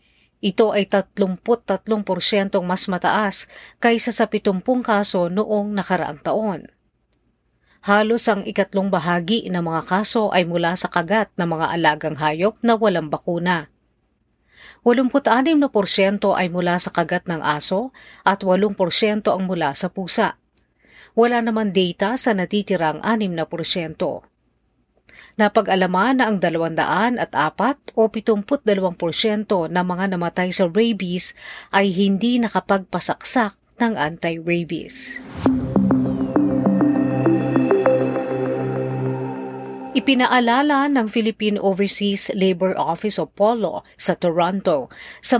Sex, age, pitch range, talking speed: female, 40-59, 175-220 Hz, 105 wpm